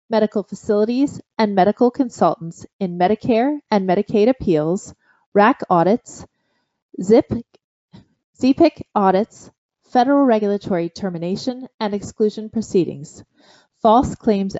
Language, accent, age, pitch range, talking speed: English, American, 30-49, 185-235 Hz, 90 wpm